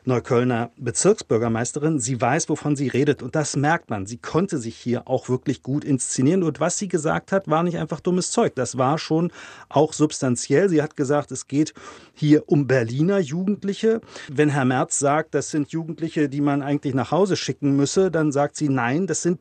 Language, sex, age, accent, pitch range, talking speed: German, male, 40-59, German, 135-175 Hz, 195 wpm